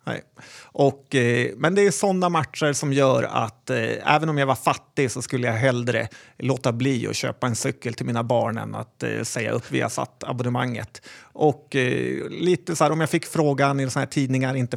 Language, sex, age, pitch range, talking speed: Swedish, male, 30-49, 120-145 Hz, 210 wpm